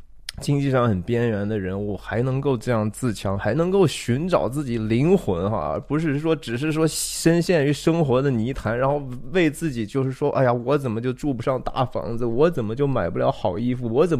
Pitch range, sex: 110-145 Hz, male